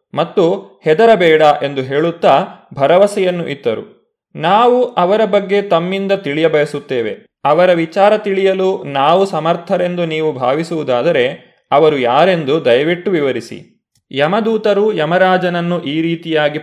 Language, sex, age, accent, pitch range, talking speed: Kannada, male, 20-39, native, 145-180 Hz, 95 wpm